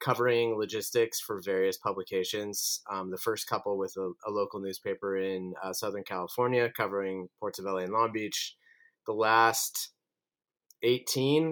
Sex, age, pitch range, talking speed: male, 30-49, 105-135 Hz, 145 wpm